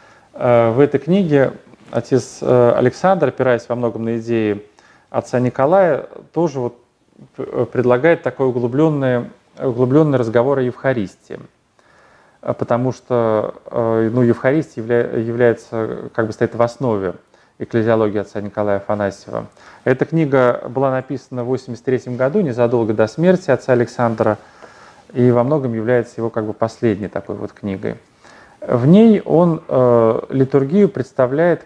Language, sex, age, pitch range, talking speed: Russian, male, 30-49, 115-145 Hz, 125 wpm